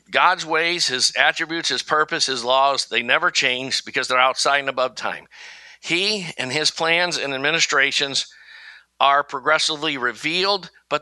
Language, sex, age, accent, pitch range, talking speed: English, male, 50-69, American, 120-160 Hz, 145 wpm